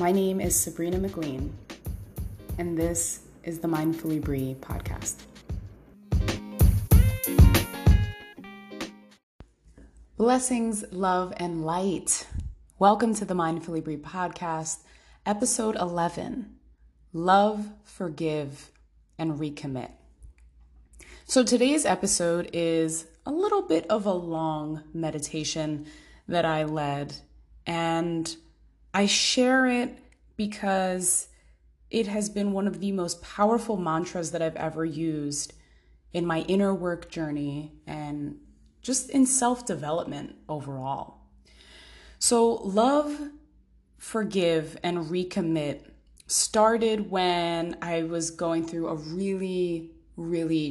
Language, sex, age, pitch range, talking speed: English, female, 20-39, 145-190 Hz, 100 wpm